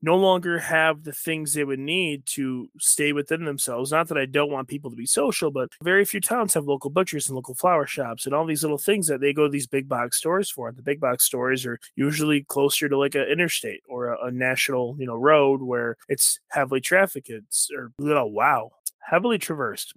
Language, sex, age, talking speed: English, male, 20-39, 220 wpm